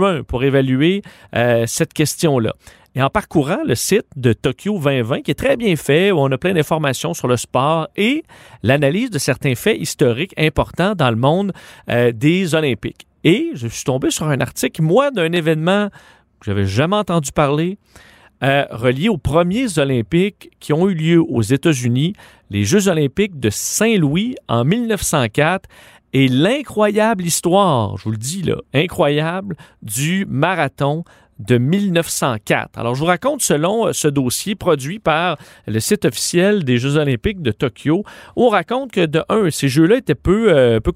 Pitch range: 130-180 Hz